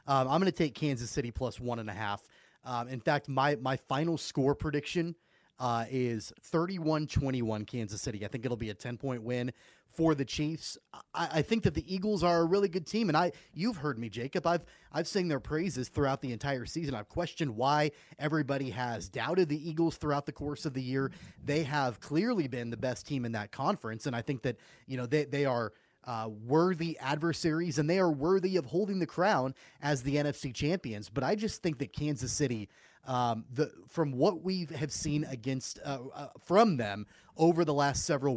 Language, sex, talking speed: English, male, 210 wpm